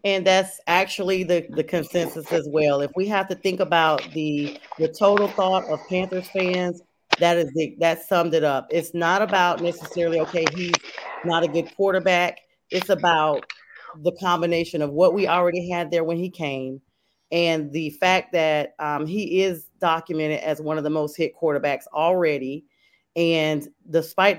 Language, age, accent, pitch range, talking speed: English, 40-59, American, 150-180 Hz, 170 wpm